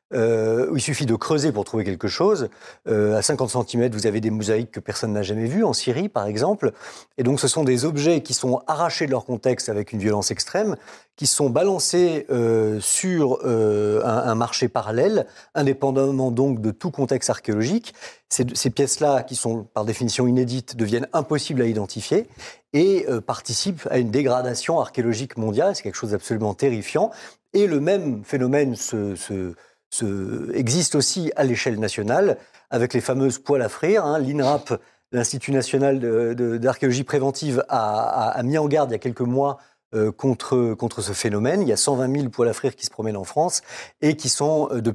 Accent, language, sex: French, French, male